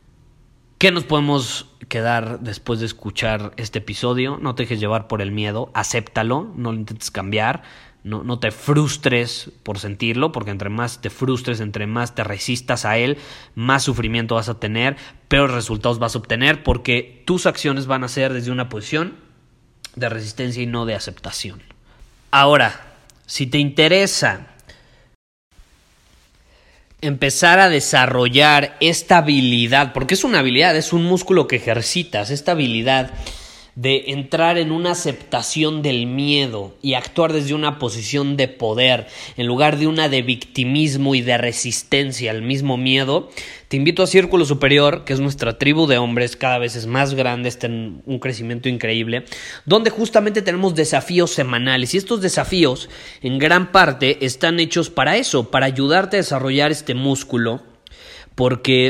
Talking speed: 155 wpm